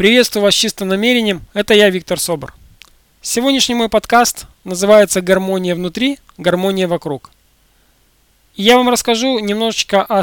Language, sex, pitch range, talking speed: Russian, male, 170-210 Hz, 130 wpm